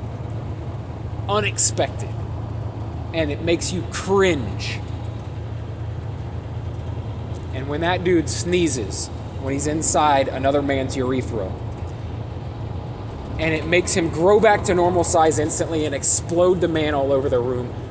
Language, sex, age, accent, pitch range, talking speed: English, male, 30-49, American, 105-155 Hz, 115 wpm